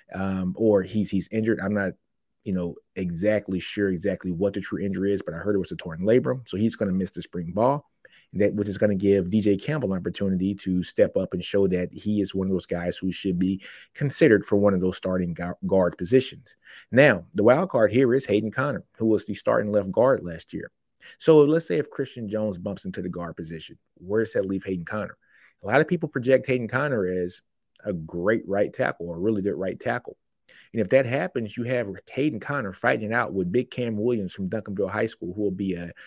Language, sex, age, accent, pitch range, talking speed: English, male, 30-49, American, 95-115 Hz, 230 wpm